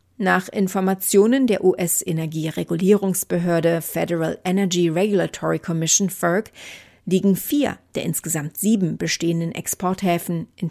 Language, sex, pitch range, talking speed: German, female, 170-200 Hz, 95 wpm